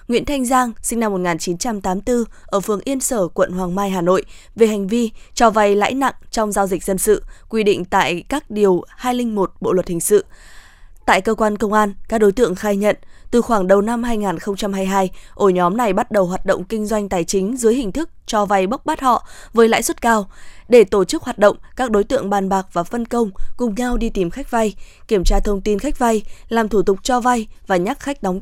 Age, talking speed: 20-39, 230 wpm